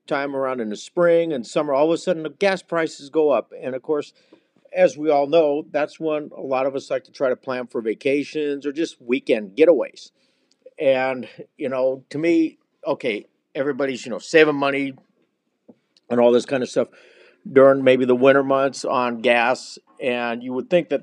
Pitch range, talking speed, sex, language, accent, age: 125-145 Hz, 195 wpm, male, English, American, 50-69